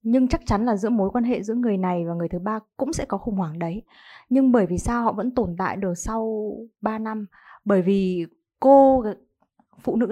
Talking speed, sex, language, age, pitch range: 225 wpm, female, Vietnamese, 20-39, 190-250 Hz